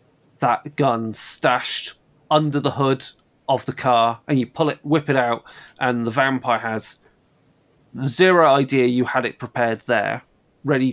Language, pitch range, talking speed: English, 120-150 Hz, 155 wpm